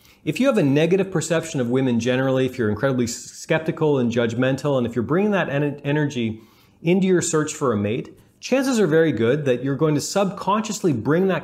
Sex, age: male, 30-49